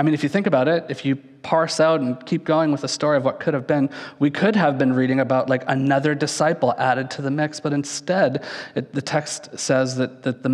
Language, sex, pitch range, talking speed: English, male, 125-155 Hz, 250 wpm